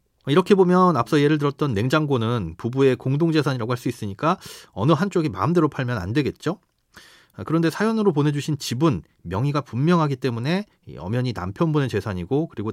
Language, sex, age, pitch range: Korean, male, 30-49, 115-155 Hz